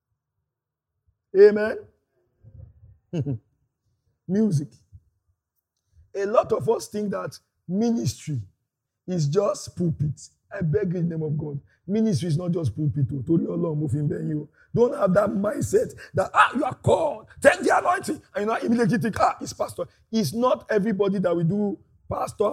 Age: 50-69